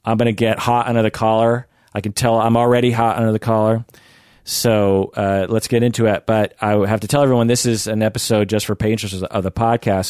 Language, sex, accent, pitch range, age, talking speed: English, male, American, 100-120 Hz, 30-49, 230 wpm